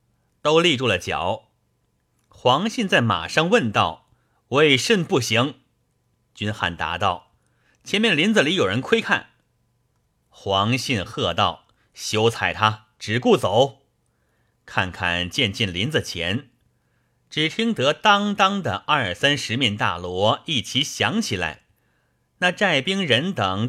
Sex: male